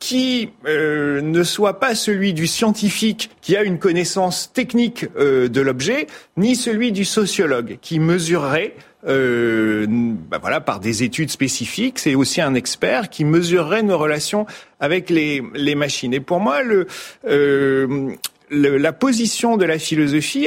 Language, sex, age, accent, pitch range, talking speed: French, male, 40-59, French, 160-240 Hz, 150 wpm